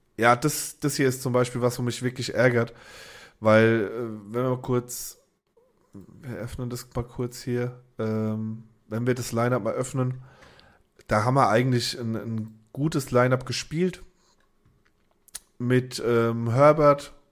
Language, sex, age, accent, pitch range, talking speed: German, male, 20-39, German, 115-135 Hz, 145 wpm